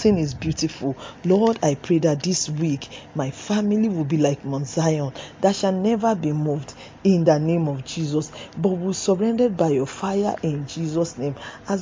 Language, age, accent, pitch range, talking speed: English, 40-59, Nigerian, 150-195 Hz, 180 wpm